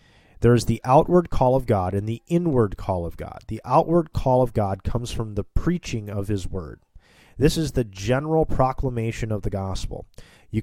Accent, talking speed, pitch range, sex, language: American, 185 wpm, 100-130 Hz, male, English